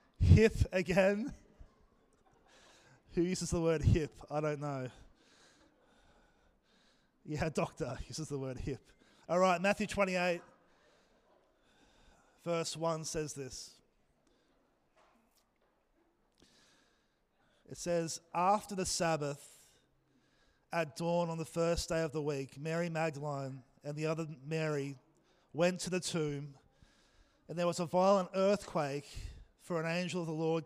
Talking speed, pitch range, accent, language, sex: 115 wpm, 150-175 Hz, Australian, English, male